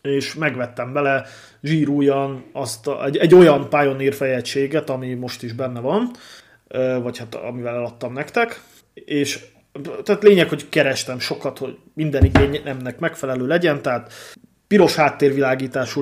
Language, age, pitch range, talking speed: Hungarian, 30-49, 125-150 Hz, 125 wpm